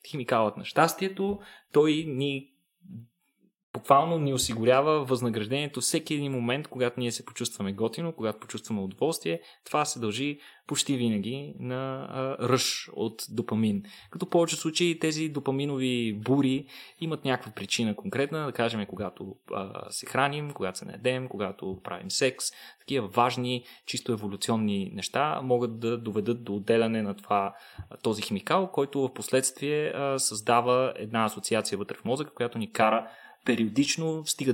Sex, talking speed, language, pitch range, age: male, 140 wpm, Bulgarian, 115-150 Hz, 20-39